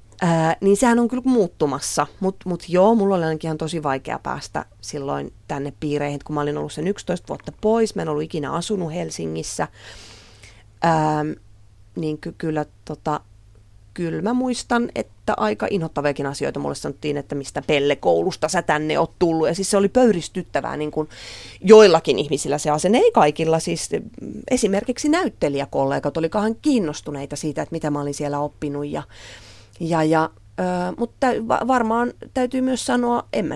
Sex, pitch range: female, 145-210 Hz